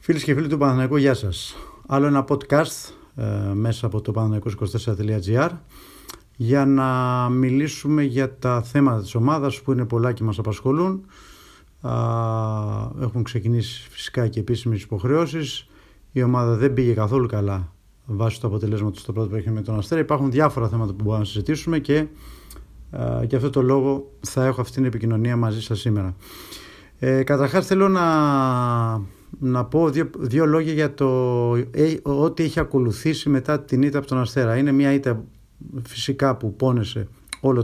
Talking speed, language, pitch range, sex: 165 wpm, Greek, 110-140 Hz, male